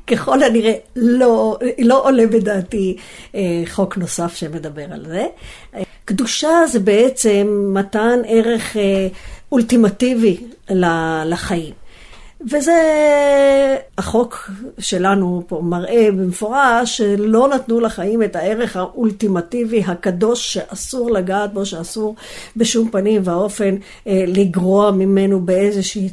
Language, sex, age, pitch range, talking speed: Hebrew, female, 50-69, 190-245 Hz, 95 wpm